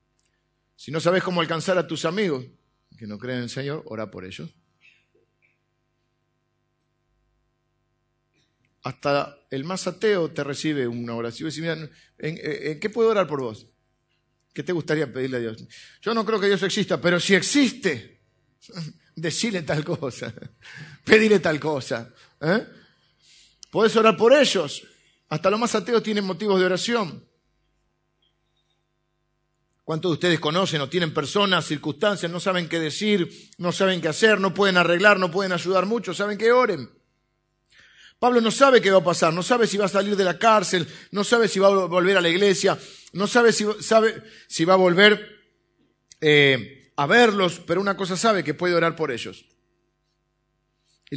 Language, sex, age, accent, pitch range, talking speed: Spanish, male, 50-69, Argentinian, 150-195 Hz, 160 wpm